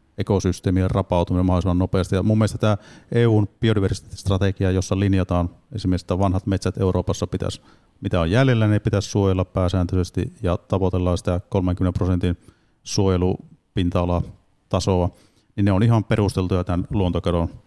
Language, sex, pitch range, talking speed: Finnish, male, 90-105 Hz, 125 wpm